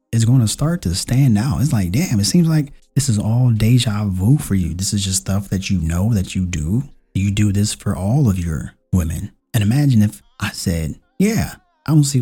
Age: 30-49